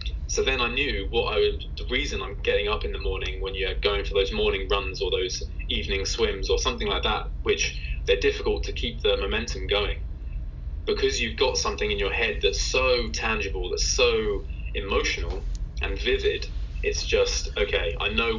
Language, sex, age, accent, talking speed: English, male, 20-39, British, 190 wpm